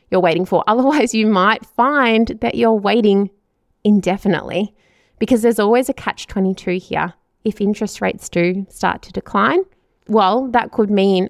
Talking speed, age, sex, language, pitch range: 150 wpm, 20-39, female, English, 185-235 Hz